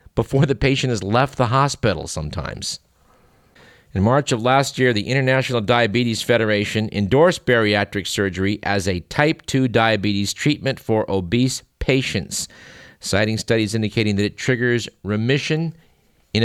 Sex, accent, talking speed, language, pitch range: male, American, 135 wpm, English, 100-120 Hz